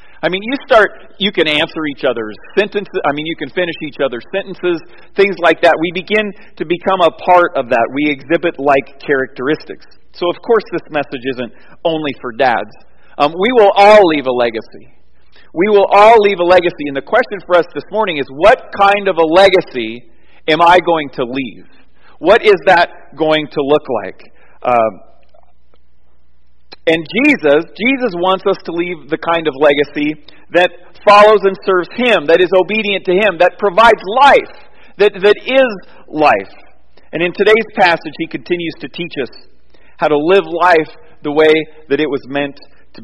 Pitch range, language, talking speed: 145-195 Hz, English, 180 wpm